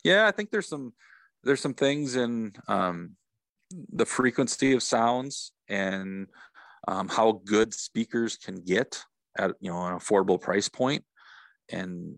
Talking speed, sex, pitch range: 145 wpm, male, 100-125 Hz